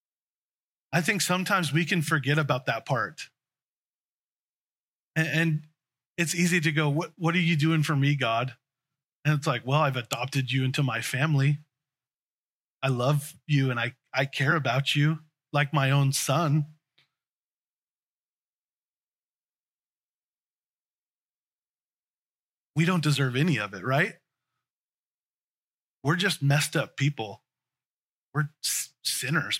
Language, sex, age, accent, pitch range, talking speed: English, male, 30-49, American, 135-155 Hz, 120 wpm